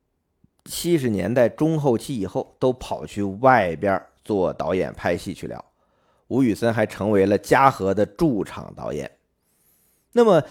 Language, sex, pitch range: Chinese, male, 105-150 Hz